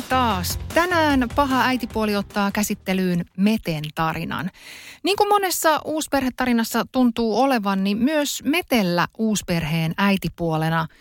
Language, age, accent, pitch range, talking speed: Finnish, 30-49, native, 170-245 Hz, 100 wpm